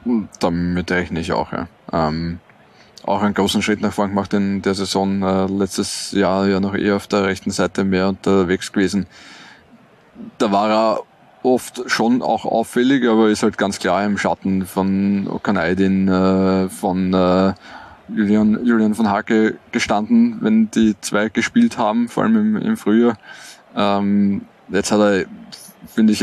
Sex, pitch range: male, 95-110 Hz